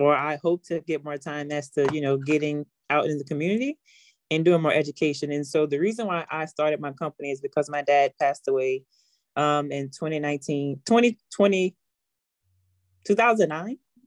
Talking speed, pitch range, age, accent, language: 170 wpm, 140-160 Hz, 20-39, American, English